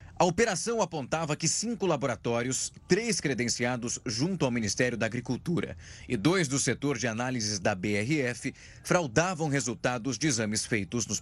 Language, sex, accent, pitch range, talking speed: Portuguese, male, Brazilian, 115-155 Hz, 145 wpm